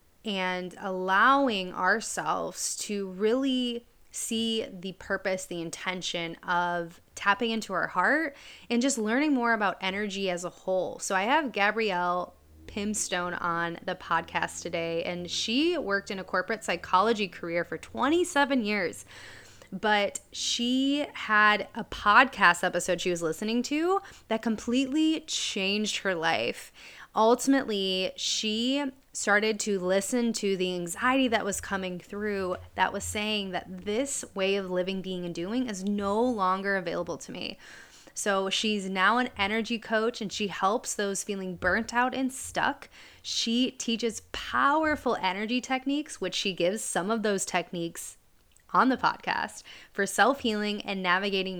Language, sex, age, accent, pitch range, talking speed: English, female, 20-39, American, 180-235 Hz, 140 wpm